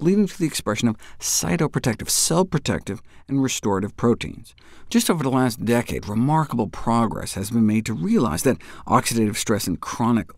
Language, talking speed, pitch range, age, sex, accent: English, 160 wpm, 110-155 Hz, 50-69, male, American